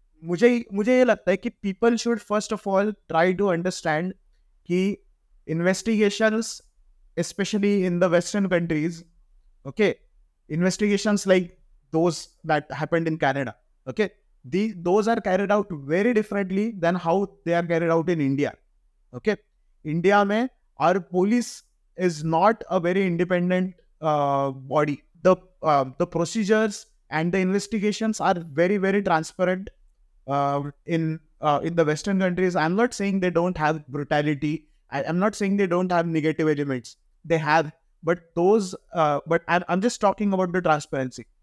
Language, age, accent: Hindi, 20-39, native